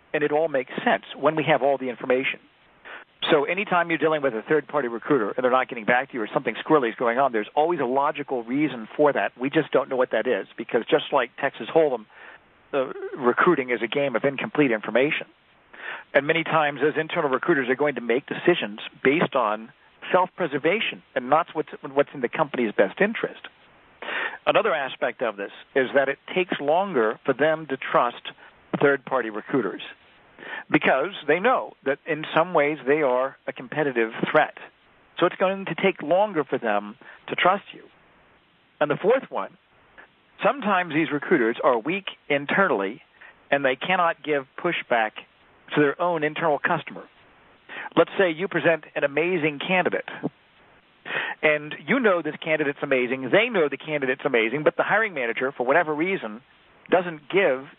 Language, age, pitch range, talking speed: English, 50-69, 135-165 Hz, 170 wpm